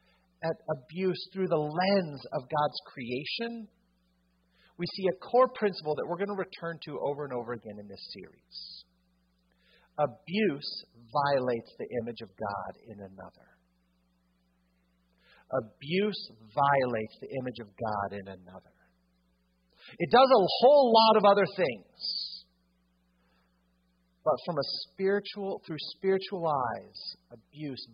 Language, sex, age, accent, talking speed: English, male, 50-69, American, 120 wpm